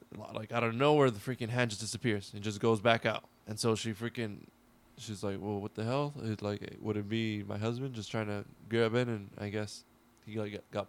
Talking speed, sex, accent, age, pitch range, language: 230 wpm, male, American, 20-39, 105-125 Hz, English